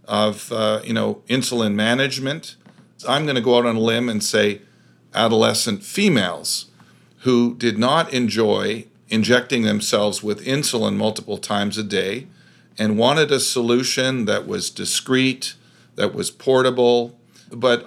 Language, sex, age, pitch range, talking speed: English, male, 40-59, 105-125 Hz, 140 wpm